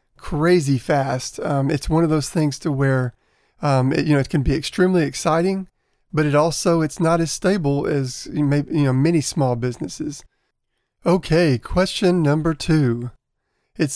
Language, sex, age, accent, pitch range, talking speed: English, male, 40-59, American, 130-155 Hz, 160 wpm